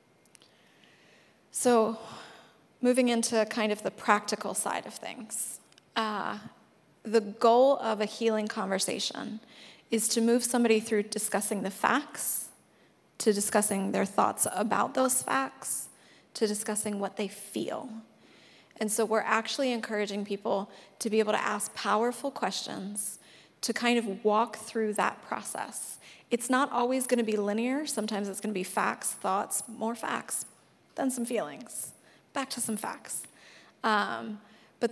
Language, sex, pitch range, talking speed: English, female, 210-235 Hz, 140 wpm